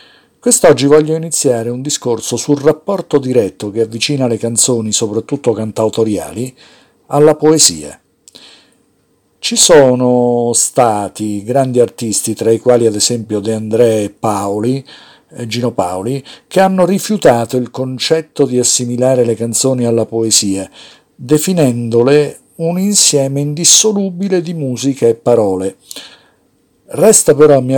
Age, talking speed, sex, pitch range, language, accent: 50-69, 120 wpm, male, 115-150 Hz, Italian, native